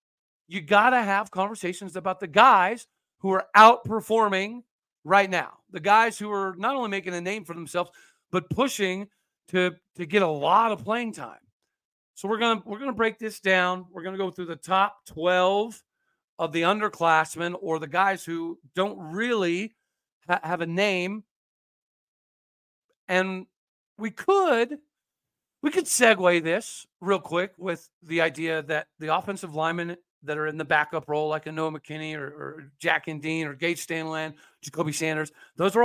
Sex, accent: male, American